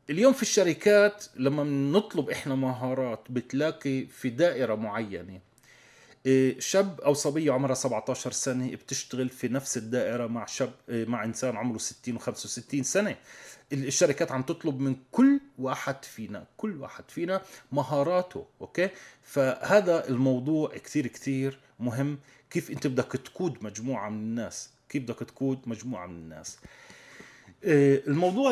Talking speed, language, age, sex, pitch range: 125 wpm, Arabic, 30-49, male, 130-175 Hz